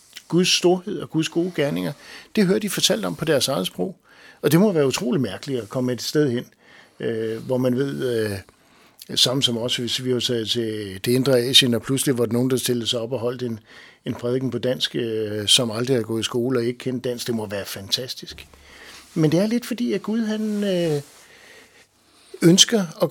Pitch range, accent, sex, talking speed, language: 120-170 Hz, native, male, 200 wpm, Danish